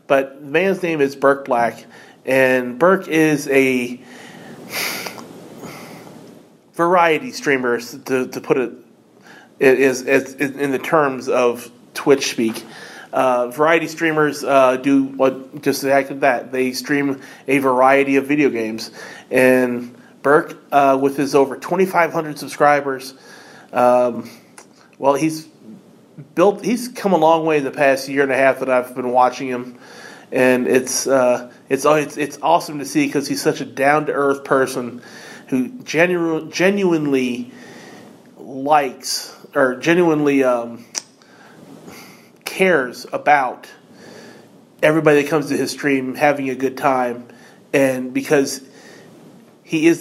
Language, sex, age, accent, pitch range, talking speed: English, male, 30-49, American, 130-155 Hz, 130 wpm